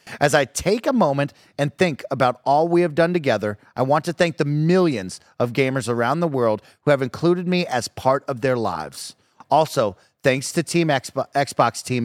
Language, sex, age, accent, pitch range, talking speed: English, male, 30-49, American, 115-155 Hz, 195 wpm